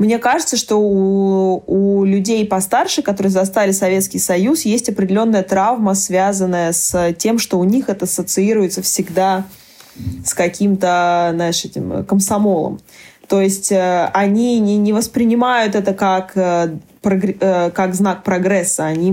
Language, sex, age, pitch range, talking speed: Russian, female, 20-39, 175-210 Hz, 130 wpm